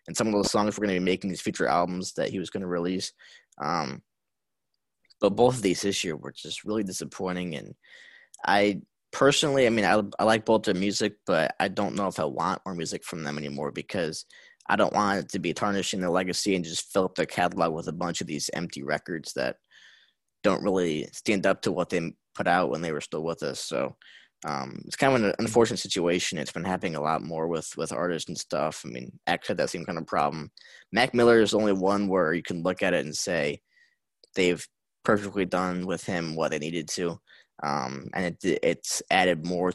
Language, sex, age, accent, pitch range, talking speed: English, male, 10-29, American, 90-110 Hz, 225 wpm